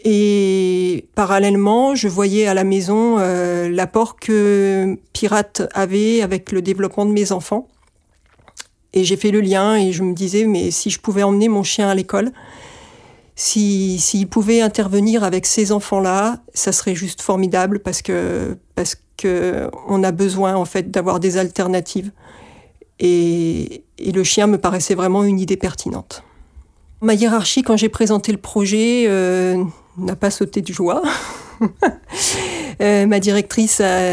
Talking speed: 150 wpm